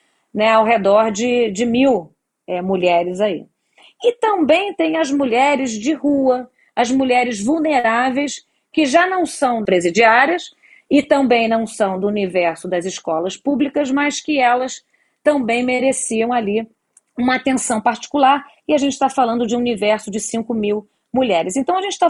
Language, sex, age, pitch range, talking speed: Portuguese, female, 40-59, 215-280 Hz, 155 wpm